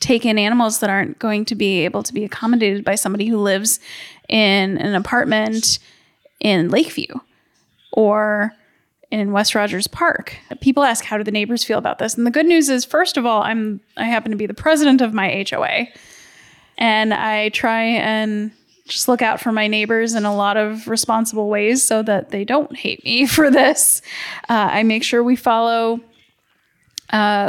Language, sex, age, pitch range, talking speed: English, female, 10-29, 215-240 Hz, 185 wpm